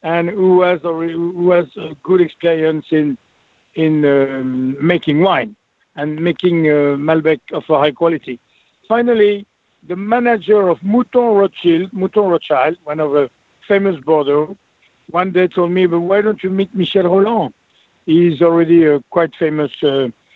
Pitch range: 160-195 Hz